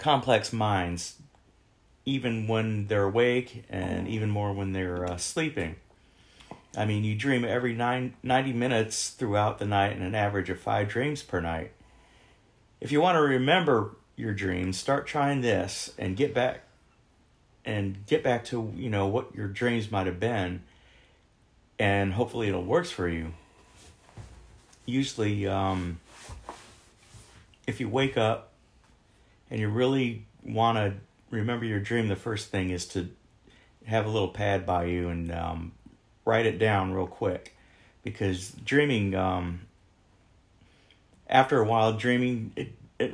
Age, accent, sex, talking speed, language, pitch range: 40-59, American, male, 145 wpm, English, 95-125 Hz